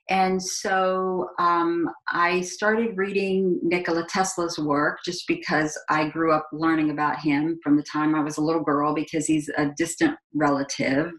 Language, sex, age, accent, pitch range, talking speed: English, female, 40-59, American, 155-215 Hz, 160 wpm